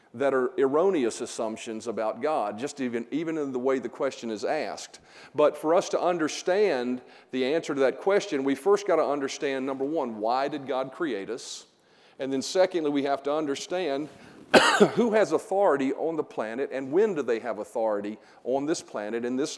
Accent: American